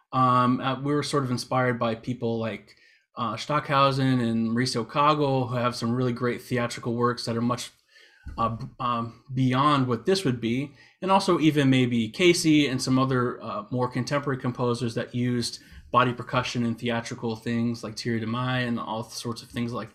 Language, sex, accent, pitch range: English, male, American, 120-140 Hz